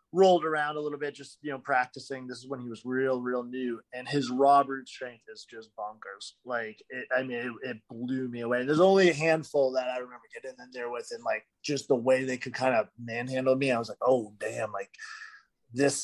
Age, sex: 30-49, male